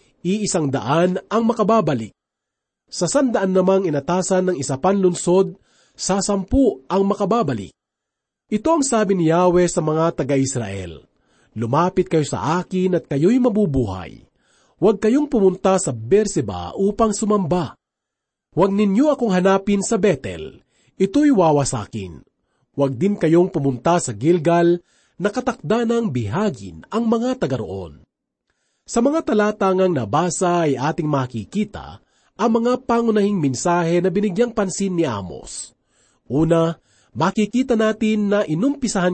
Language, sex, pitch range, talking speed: Filipino, male, 145-210 Hz, 125 wpm